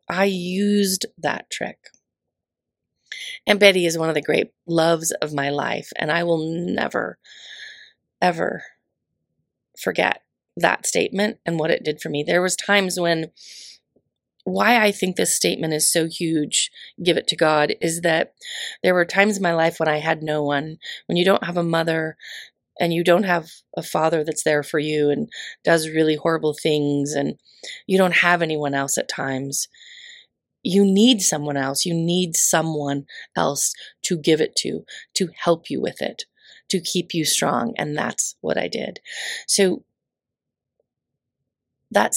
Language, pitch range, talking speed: English, 155-200 Hz, 165 wpm